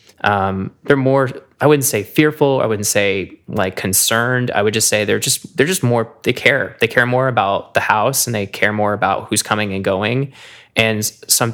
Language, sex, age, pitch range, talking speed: English, male, 20-39, 105-125 Hz, 210 wpm